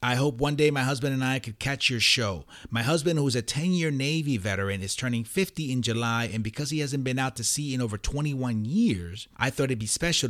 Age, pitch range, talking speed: 30-49, 110-140 Hz, 245 wpm